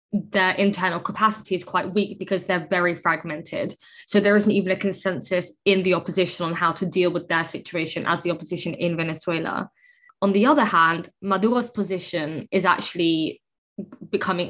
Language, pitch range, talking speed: English, 175-195 Hz, 165 wpm